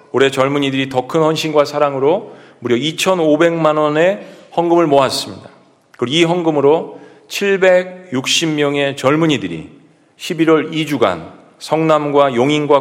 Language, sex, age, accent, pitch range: Korean, male, 40-59, native, 135-160 Hz